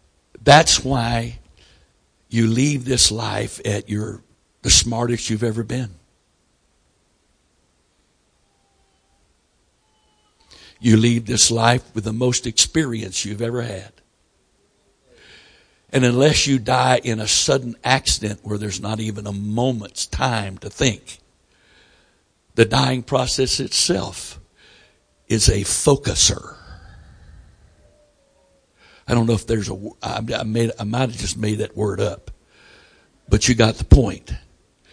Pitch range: 105-125 Hz